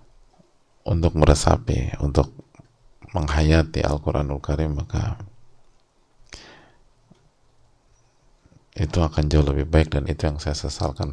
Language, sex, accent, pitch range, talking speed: English, male, Indonesian, 75-100 Hz, 90 wpm